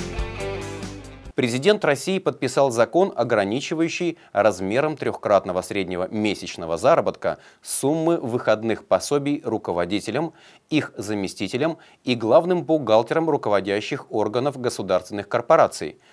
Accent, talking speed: native, 85 wpm